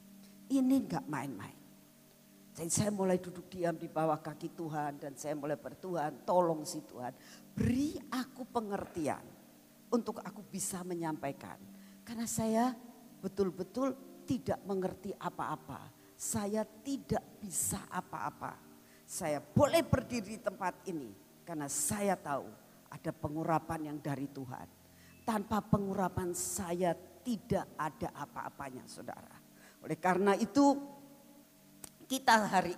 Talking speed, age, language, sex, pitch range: 115 wpm, 50-69, Indonesian, female, 165-235 Hz